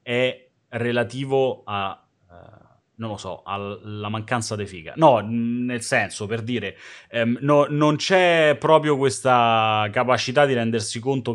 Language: Italian